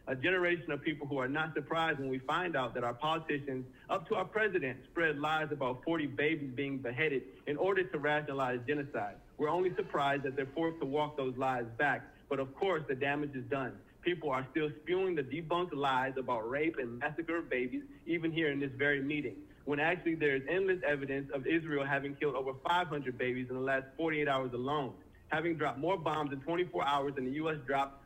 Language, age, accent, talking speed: English, 40-59, American, 210 wpm